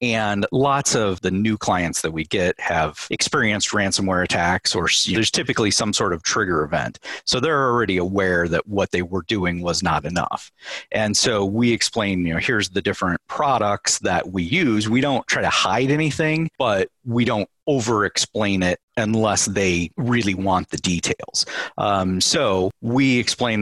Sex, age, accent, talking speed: male, 40-59, American, 175 wpm